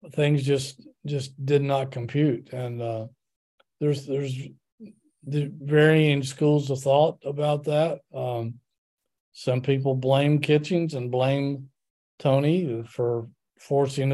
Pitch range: 125-145 Hz